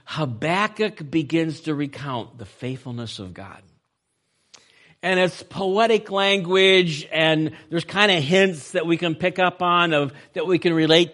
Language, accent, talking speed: English, American, 145 wpm